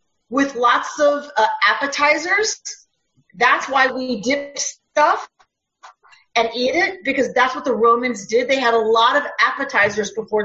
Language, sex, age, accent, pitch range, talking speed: English, female, 40-59, American, 215-290 Hz, 150 wpm